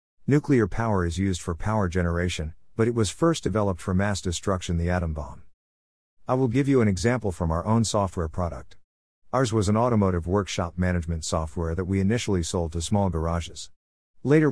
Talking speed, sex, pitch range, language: 180 wpm, male, 85-110 Hz, English